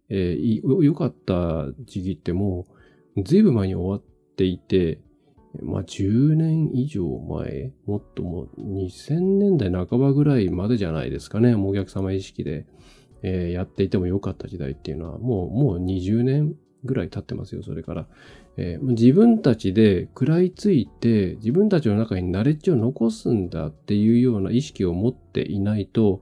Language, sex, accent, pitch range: Japanese, male, native, 95-130 Hz